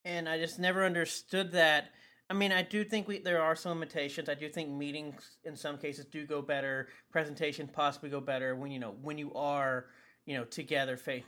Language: English